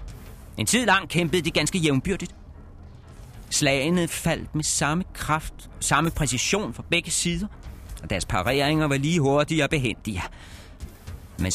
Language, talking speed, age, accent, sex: Danish, 140 wpm, 30-49, native, male